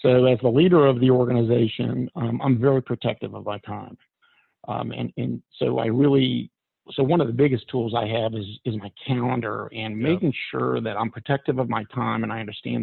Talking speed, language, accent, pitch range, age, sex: 205 wpm, English, American, 110-135 Hz, 50-69, male